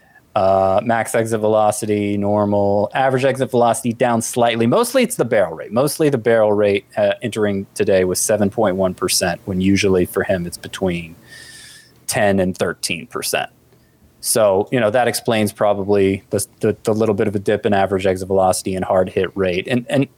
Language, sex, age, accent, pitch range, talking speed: English, male, 30-49, American, 100-125 Hz, 175 wpm